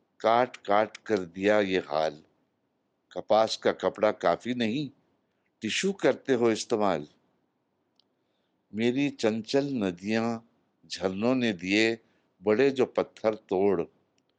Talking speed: 105 wpm